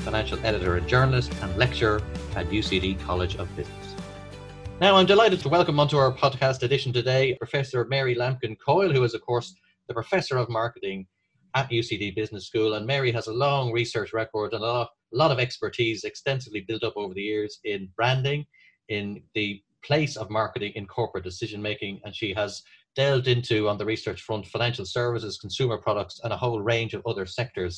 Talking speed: 190 wpm